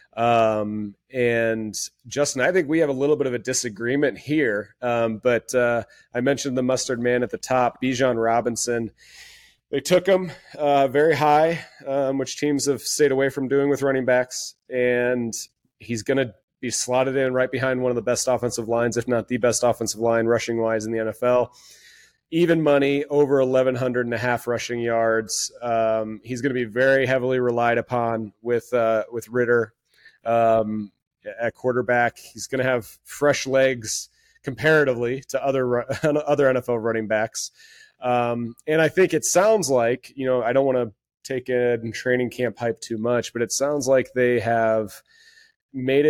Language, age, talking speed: English, 30-49, 175 wpm